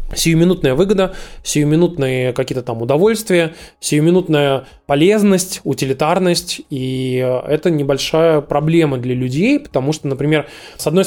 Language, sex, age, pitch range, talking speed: Russian, male, 20-39, 140-175 Hz, 110 wpm